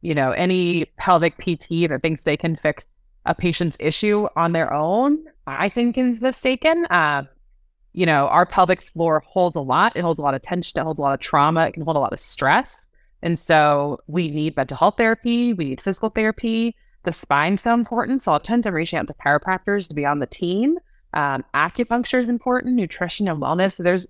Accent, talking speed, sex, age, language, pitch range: American, 210 wpm, female, 20-39, English, 150-195 Hz